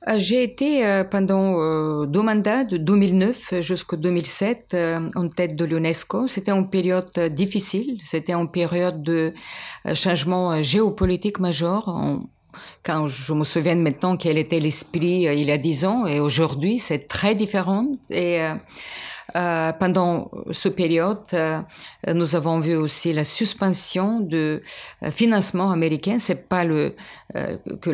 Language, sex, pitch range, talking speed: French, female, 160-195 Hz, 135 wpm